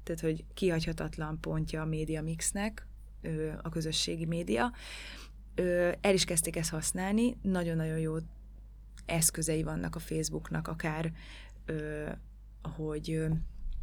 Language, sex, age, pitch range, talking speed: Hungarian, female, 20-39, 160-175 Hz, 100 wpm